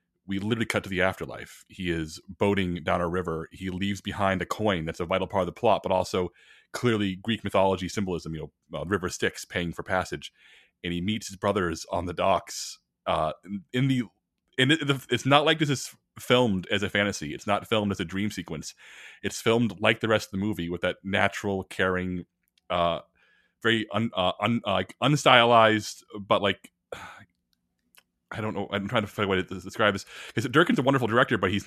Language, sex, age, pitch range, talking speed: English, male, 30-49, 95-110 Hz, 205 wpm